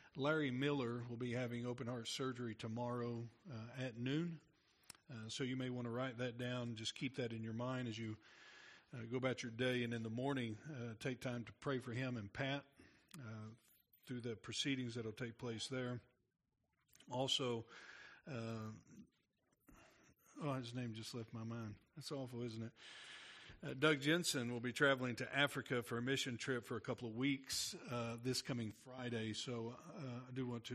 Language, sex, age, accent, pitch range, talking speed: English, male, 50-69, American, 115-135 Hz, 185 wpm